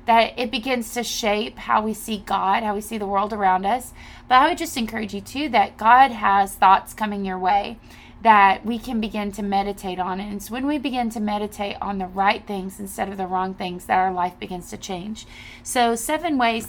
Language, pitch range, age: English, 195-230 Hz, 30-49